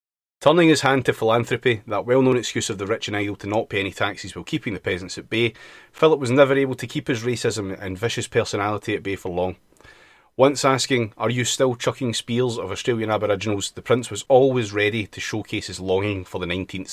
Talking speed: 215 wpm